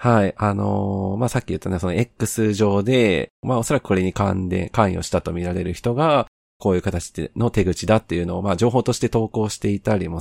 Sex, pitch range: male, 90-120 Hz